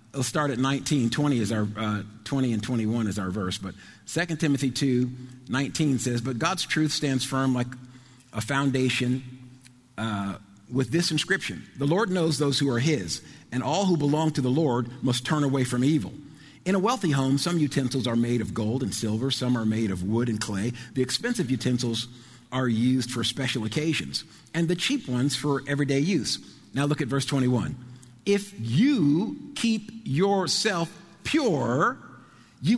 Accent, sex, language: American, male, English